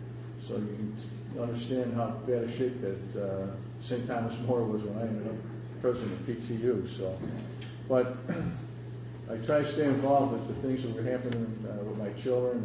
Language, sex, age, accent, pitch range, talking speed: English, male, 50-69, American, 110-125 Hz, 180 wpm